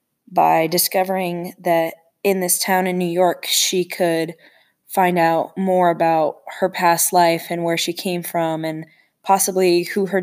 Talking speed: 160 wpm